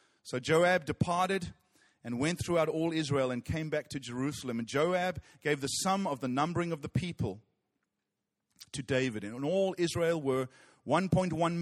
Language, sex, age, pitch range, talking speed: English, male, 40-59, 105-135 Hz, 165 wpm